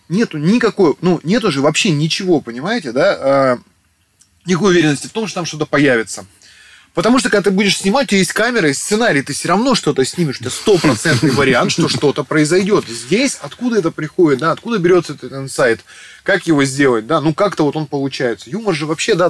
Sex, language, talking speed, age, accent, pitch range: male, Russian, 195 wpm, 20-39, native, 125-175 Hz